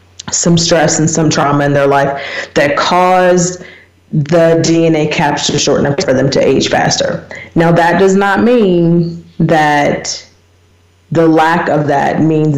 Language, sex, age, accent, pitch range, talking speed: English, female, 30-49, American, 150-175 Hz, 155 wpm